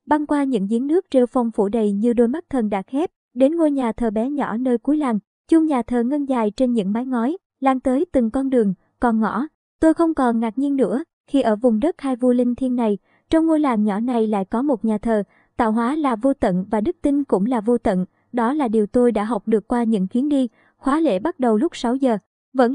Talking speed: 255 wpm